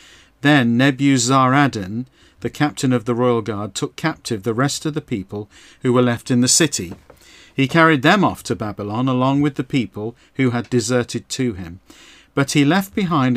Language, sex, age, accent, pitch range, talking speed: English, male, 50-69, British, 105-145 Hz, 180 wpm